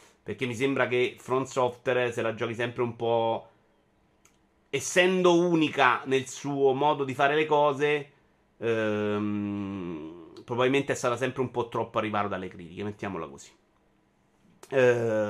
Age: 30-49